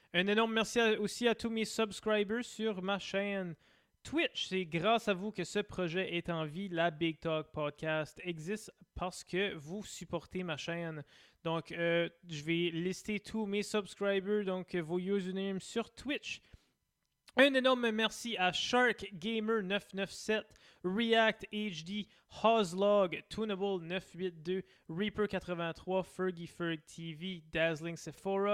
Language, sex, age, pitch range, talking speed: French, male, 20-39, 160-200 Hz, 130 wpm